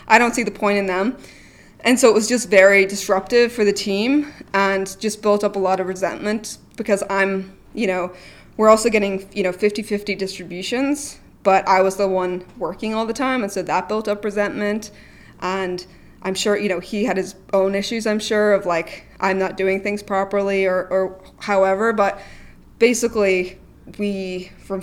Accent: American